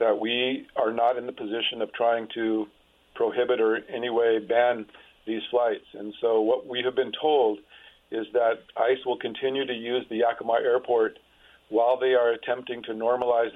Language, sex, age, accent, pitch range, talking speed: English, male, 50-69, American, 110-125 Hz, 180 wpm